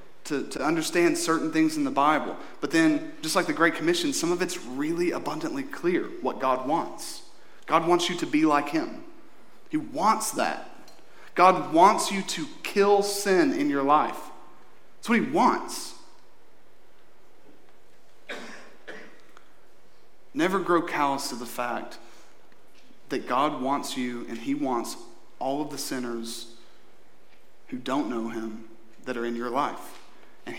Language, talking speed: English, 145 wpm